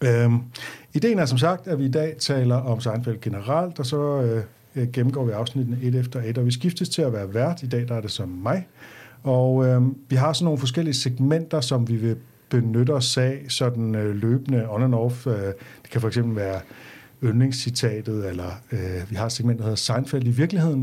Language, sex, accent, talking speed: Danish, male, native, 210 wpm